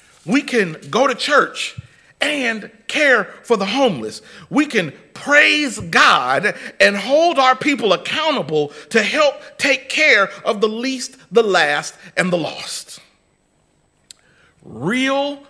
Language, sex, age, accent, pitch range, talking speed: English, male, 40-59, American, 160-245 Hz, 125 wpm